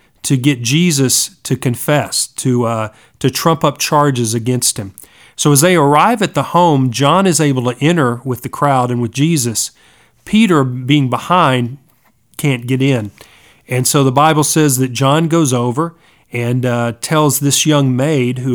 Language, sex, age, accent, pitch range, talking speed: English, male, 40-59, American, 125-155 Hz, 170 wpm